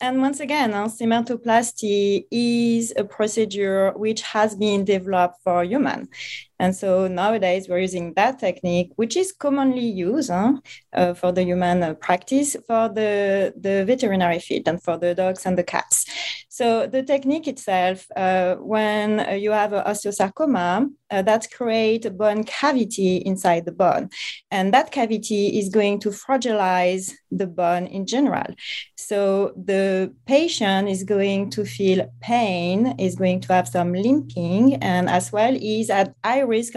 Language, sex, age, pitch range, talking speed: English, female, 30-49, 185-230 Hz, 155 wpm